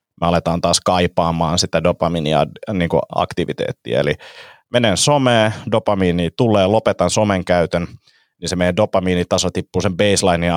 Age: 30-49